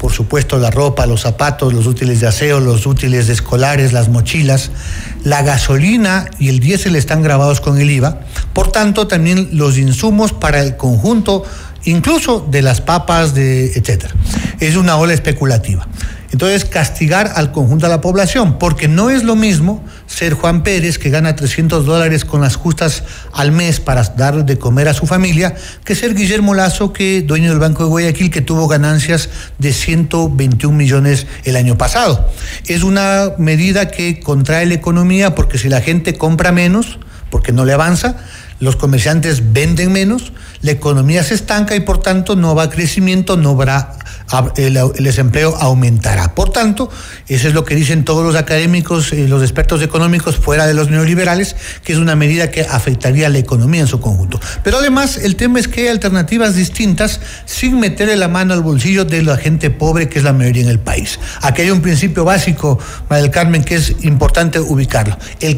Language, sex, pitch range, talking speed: Spanish, male, 135-180 Hz, 180 wpm